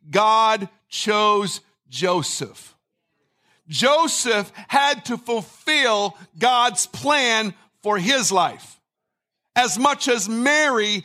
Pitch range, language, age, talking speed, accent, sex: 180-240 Hz, English, 50-69, 85 wpm, American, male